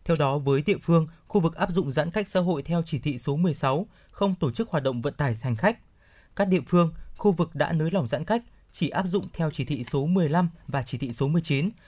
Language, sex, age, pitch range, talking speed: Vietnamese, male, 20-39, 140-180 Hz, 255 wpm